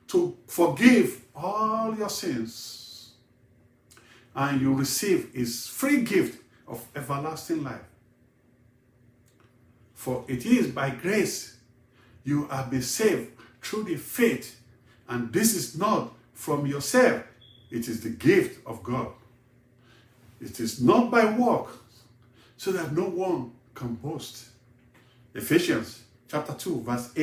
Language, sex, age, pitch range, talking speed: English, male, 50-69, 120-150 Hz, 115 wpm